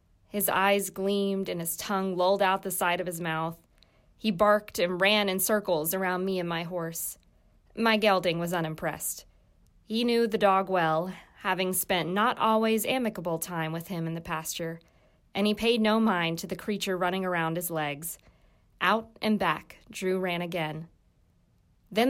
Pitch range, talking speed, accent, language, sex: 180-220 Hz, 170 wpm, American, English, female